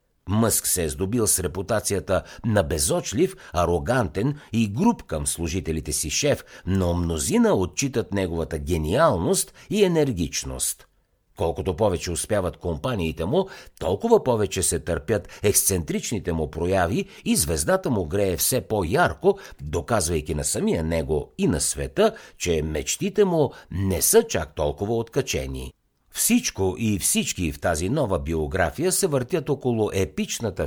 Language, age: Bulgarian, 60-79